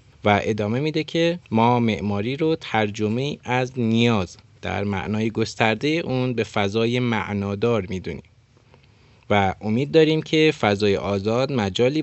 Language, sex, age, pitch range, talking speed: Persian, male, 20-39, 100-125 Hz, 125 wpm